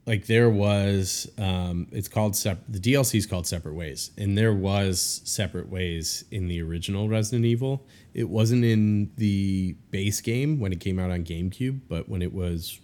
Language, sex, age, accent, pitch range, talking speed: English, male, 30-49, American, 85-110 Hz, 180 wpm